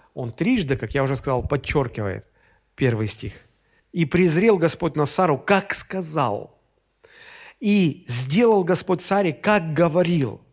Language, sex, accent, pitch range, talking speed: Russian, male, native, 125-200 Hz, 125 wpm